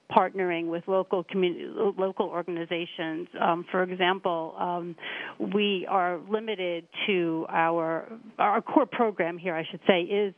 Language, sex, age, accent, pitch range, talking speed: English, female, 40-59, American, 170-190 Hz, 135 wpm